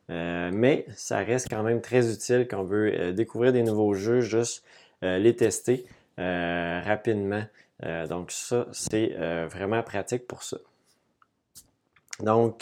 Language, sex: French, male